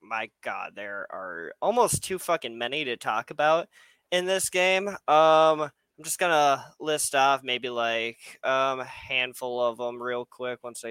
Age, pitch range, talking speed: 20-39, 130-165 Hz, 165 wpm